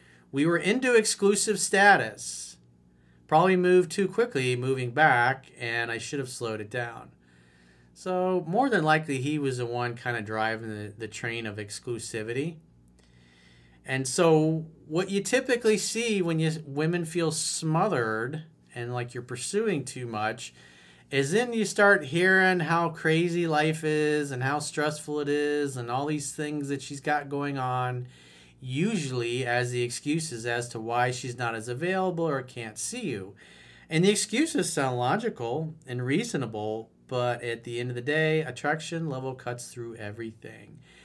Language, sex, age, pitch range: English, male, 40-59, 115-160 Hz